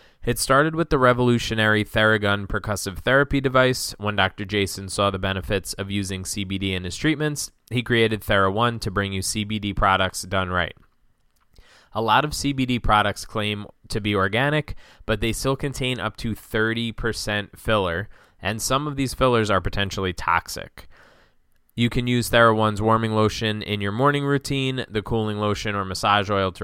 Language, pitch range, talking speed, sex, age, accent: English, 100-120 Hz, 165 wpm, male, 20-39, American